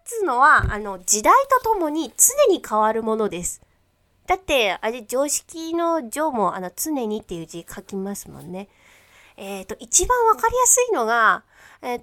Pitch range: 195-320 Hz